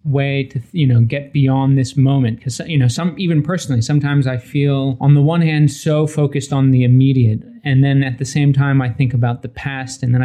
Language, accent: English, American